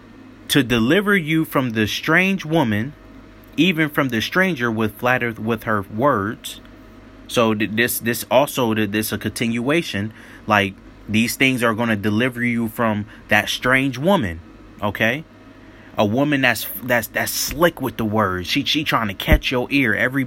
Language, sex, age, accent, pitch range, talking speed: English, male, 30-49, American, 105-145 Hz, 155 wpm